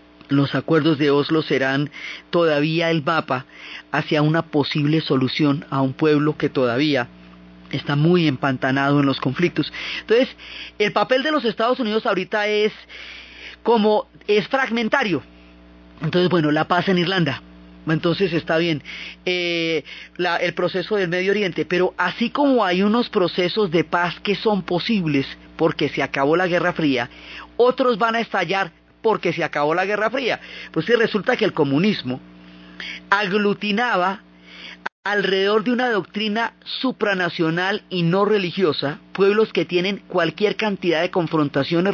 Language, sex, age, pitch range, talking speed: Spanish, female, 30-49, 140-200 Hz, 145 wpm